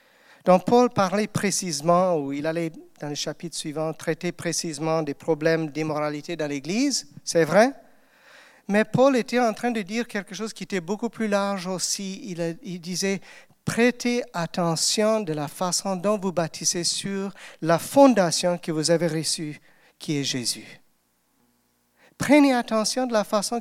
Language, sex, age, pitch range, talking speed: French, male, 50-69, 160-215 Hz, 160 wpm